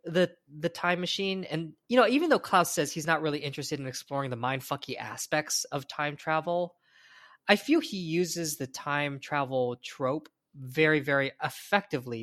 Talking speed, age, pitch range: 170 wpm, 20-39, 140-175 Hz